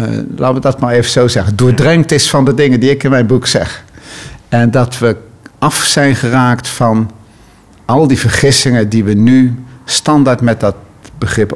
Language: Dutch